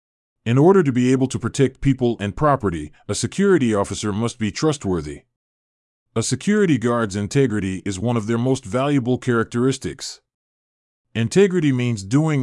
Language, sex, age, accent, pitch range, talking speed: English, male, 30-49, American, 100-140 Hz, 145 wpm